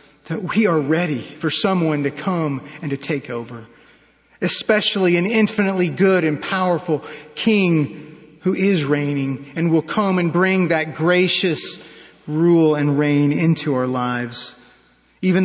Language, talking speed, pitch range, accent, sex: English, 140 wpm, 145-185 Hz, American, male